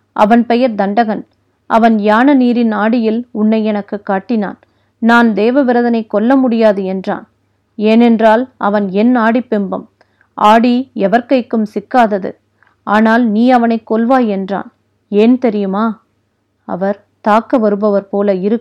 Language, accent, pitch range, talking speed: Tamil, native, 195-230 Hz, 115 wpm